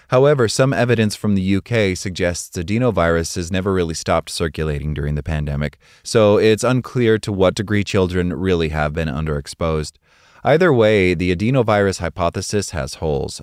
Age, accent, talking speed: 30-49, American, 150 wpm